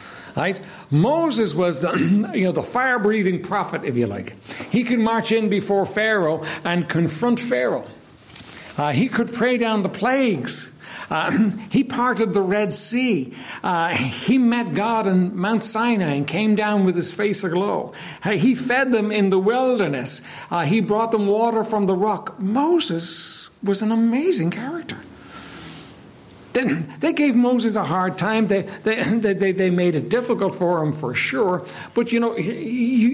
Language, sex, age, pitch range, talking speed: English, male, 60-79, 175-235 Hz, 160 wpm